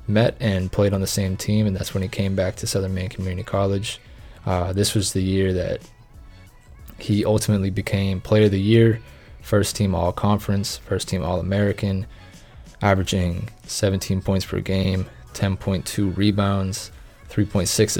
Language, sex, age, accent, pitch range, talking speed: English, male, 20-39, American, 95-110 Hz, 150 wpm